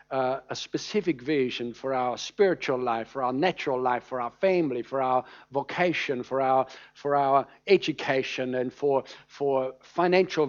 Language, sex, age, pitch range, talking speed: English, male, 60-79, 135-185 Hz, 155 wpm